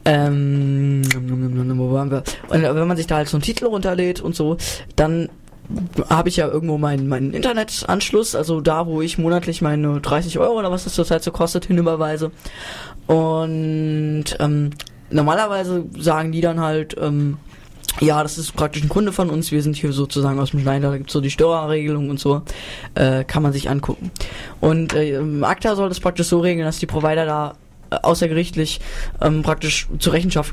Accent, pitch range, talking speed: German, 150-175 Hz, 180 wpm